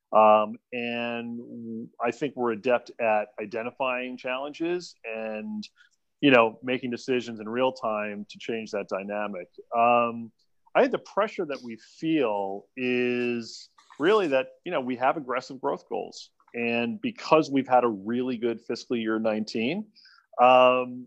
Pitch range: 115-135 Hz